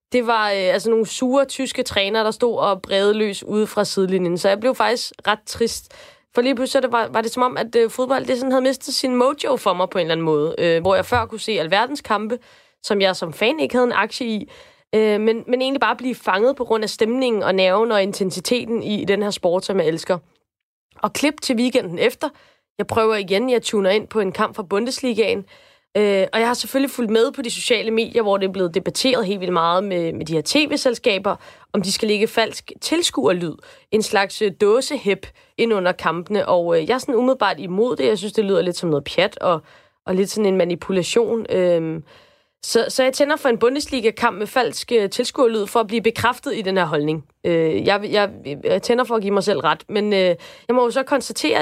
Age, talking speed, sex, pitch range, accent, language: 20-39, 230 wpm, female, 195-250 Hz, native, Danish